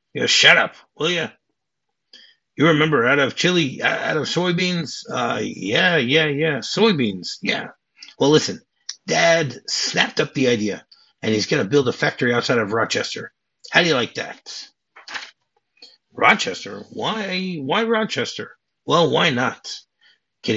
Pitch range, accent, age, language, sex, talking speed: 120-180 Hz, American, 50-69, English, male, 145 wpm